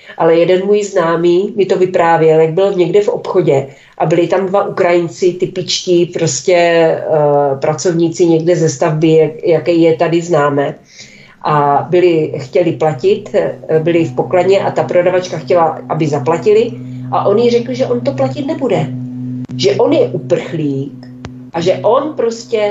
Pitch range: 155-210 Hz